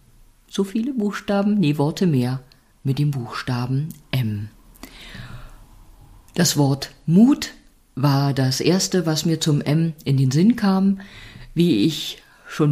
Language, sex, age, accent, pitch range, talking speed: German, female, 50-69, German, 130-170 Hz, 125 wpm